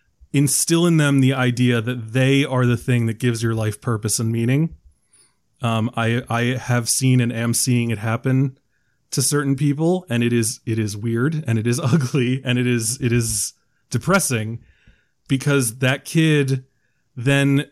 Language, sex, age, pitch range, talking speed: English, male, 20-39, 120-140 Hz, 170 wpm